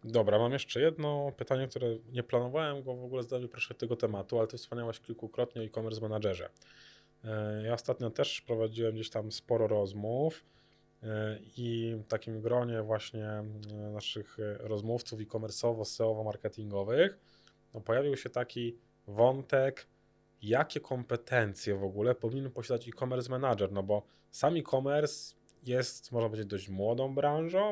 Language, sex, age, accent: Polish, male, 20-39, native